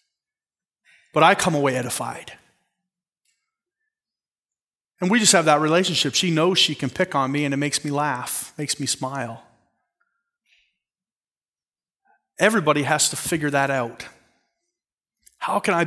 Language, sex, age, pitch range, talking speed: English, male, 30-49, 130-175 Hz, 130 wpm